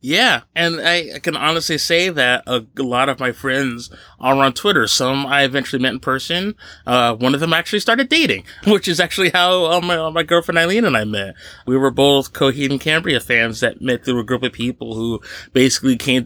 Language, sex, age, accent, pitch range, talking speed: English, male, 20-39, American, 125-170 Hz, 220 wpm